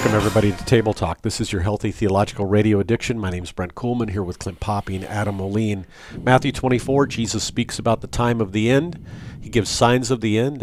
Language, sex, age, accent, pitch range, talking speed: English, male, 50-69, American, 100-120 Hz, 225 wpm